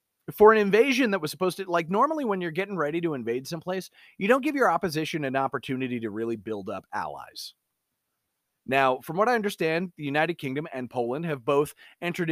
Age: 30-49